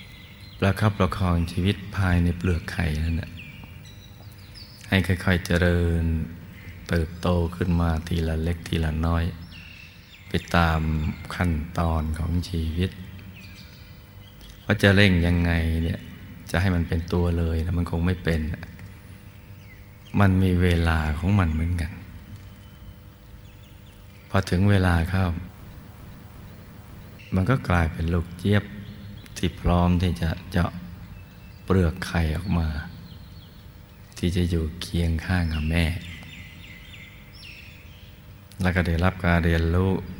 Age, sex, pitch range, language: 20-39, male, 85-100 Hz, Thai